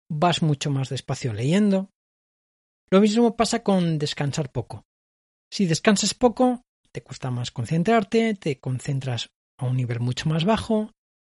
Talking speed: 140 wpm